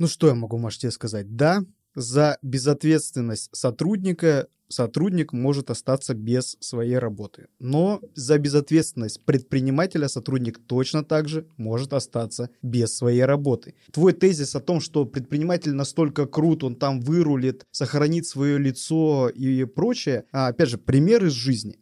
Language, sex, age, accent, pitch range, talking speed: Russian, male, 20-39, native, 125-160 Hz, 140 wpm